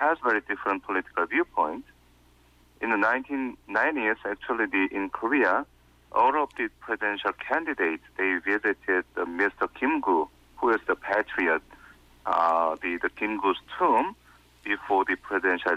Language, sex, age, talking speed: English, male, 40-59, 135 wpm